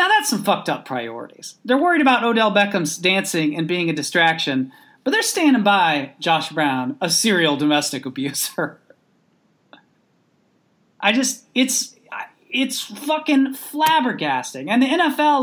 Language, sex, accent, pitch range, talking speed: English, male, American, 170-260 Hz, 135 wpm